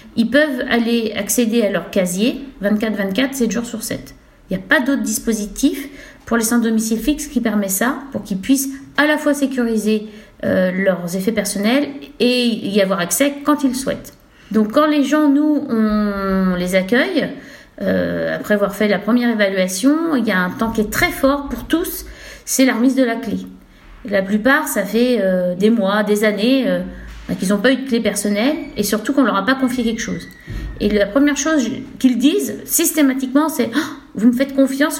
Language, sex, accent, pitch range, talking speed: French, female, French, 210-275 Hz, 200 wpm